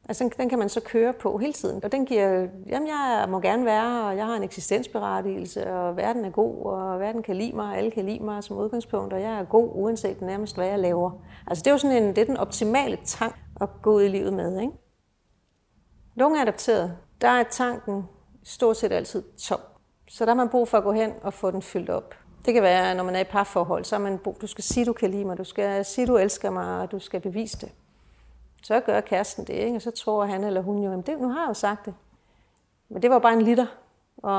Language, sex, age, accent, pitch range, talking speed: Danish, female, 40-59, native, 195-235 Hz, 255 wpm